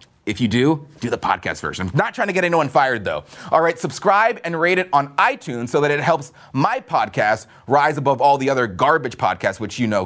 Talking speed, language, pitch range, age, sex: 225 wpm, English, 145-230 Hz, 30-49, male